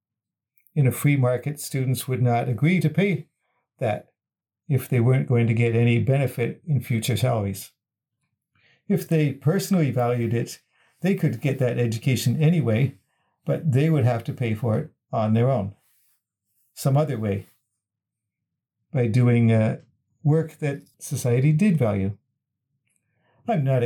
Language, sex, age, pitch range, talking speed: English, male, 50-69, 120-150 Hz, 145 wpm